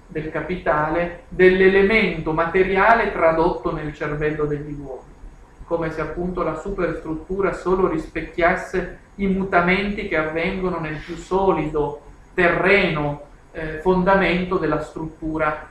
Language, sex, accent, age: Italian, male, native, 50-69